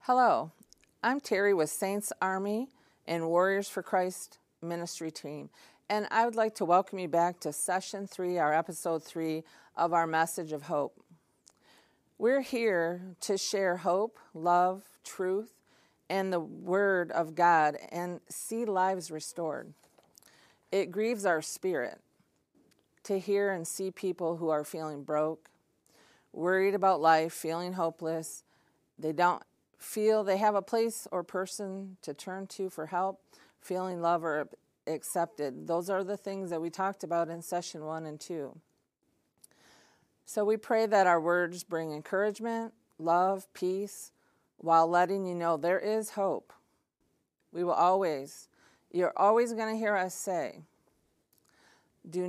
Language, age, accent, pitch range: English, 40-59, American, 165-200 Hz